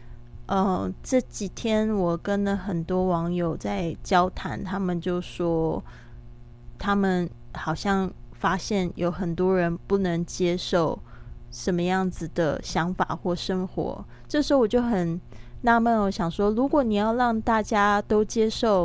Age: 20-39